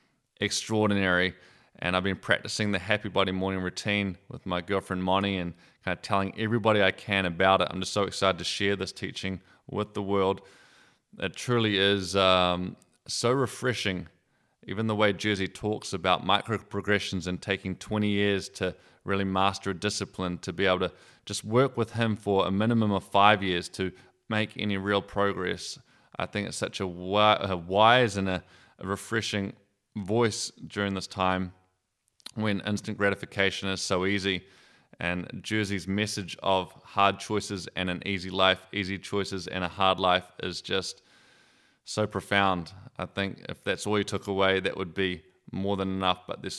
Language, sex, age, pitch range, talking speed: English, male, 20-39, 95-105 Hz, 170 wpm